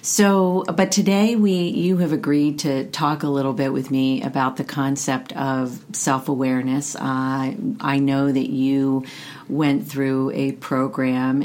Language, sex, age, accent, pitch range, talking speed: English, female, 40-59, American, 135-145 Hz, 155 wpm